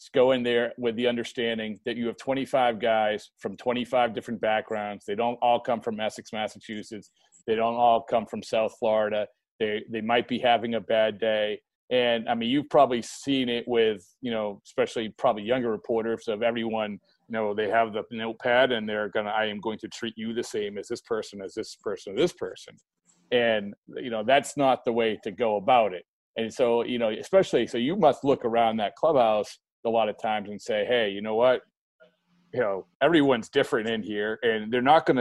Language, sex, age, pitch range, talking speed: English, male, 40-59, 110-125 Hz, 210 wpm